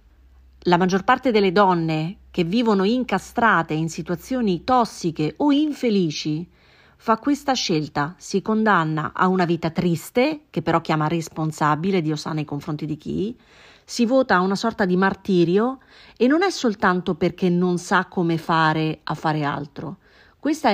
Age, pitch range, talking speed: 30-49, 170-230 Hz, 150 wpm